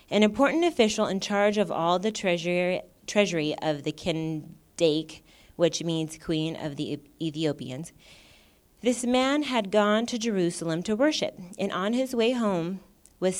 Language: English